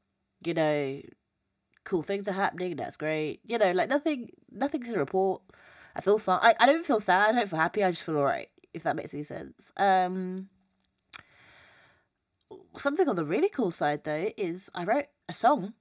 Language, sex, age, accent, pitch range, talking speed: English, female, 20-39, British, 155-200 Hz, 180 wpm